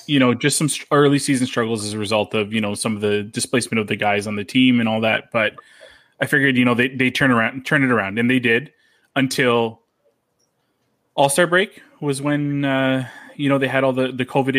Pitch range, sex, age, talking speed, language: 115-140 Hz, male, 20-39, 230 wpm, English